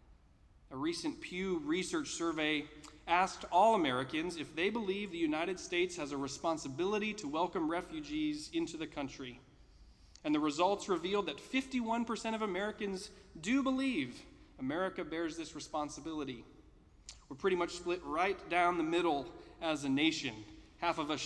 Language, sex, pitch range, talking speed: English, male, 125-210 Hz, 145 wpm